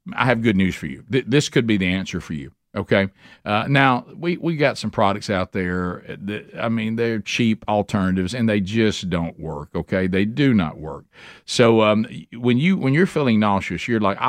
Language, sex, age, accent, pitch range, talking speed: English, male, 50-69, American, 100-125 Hz, 210 wpm